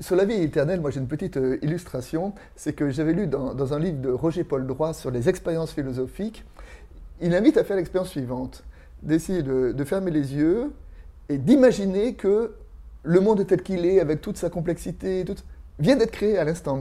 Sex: male